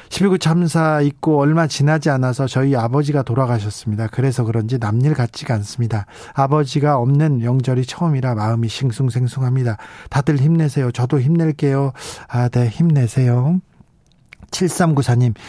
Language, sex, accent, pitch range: Korean, male, native, 130-170 Hz